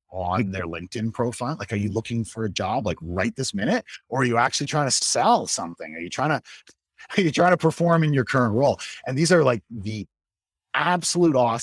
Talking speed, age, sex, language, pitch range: 215 wpm, 30-49, male, English, 95-130 Hz